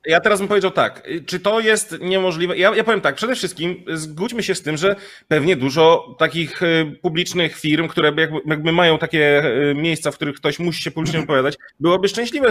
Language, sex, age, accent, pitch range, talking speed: Polish, male, 30-49, native, 150-190 Hz, 190 wpm